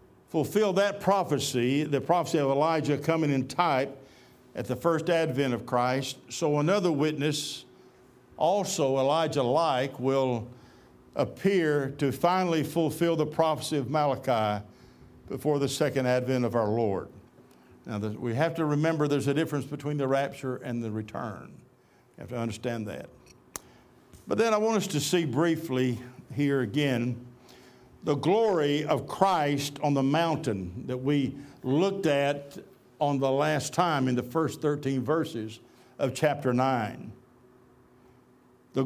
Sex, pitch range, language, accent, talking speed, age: male, 125-165 Hz, English, American, 140 wpm, 60-79